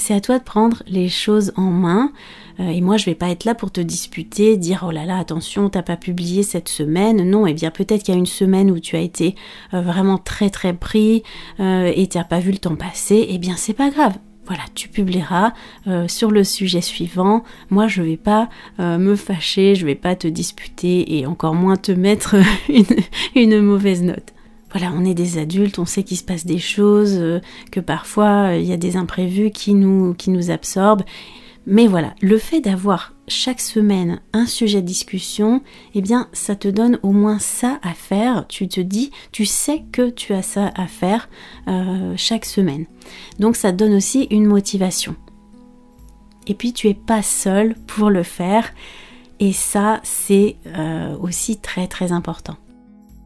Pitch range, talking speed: 180-215 Hz, 195 wpm